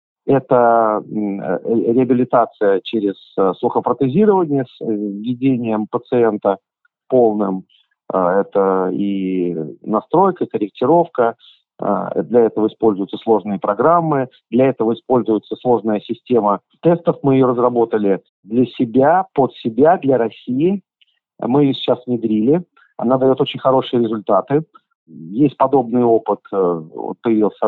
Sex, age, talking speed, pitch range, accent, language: male, 40-59, 100 wpm, 110-160 Hz, native, Russian